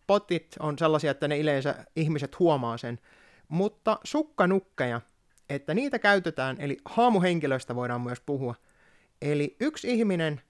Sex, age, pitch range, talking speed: male, 20-39, 145-195 Hz, 125 wpm